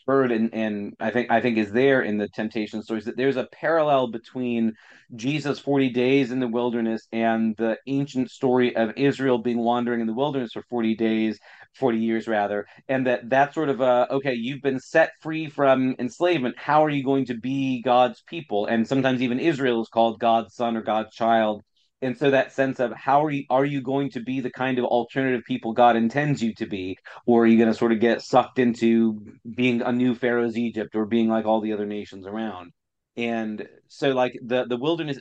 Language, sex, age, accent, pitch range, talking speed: English, male, 30-49, American, 115-135 Hz, 210 wpm